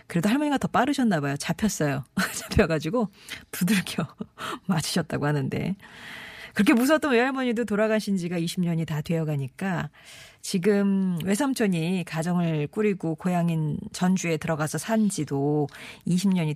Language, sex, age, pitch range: Korean, female, 40-59, 160-210 Hz